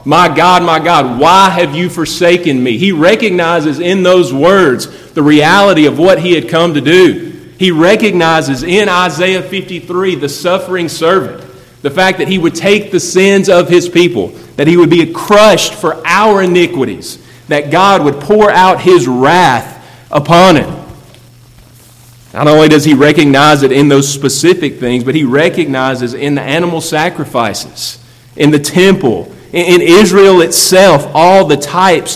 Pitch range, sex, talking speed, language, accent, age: 145-185 Hz, male, 160 wpm, English, American, 30-49